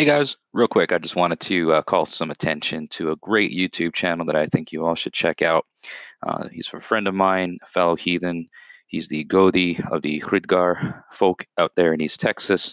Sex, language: male, English